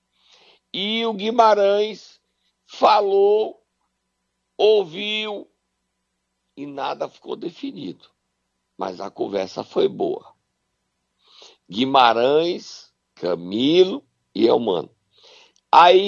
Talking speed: 70 wpm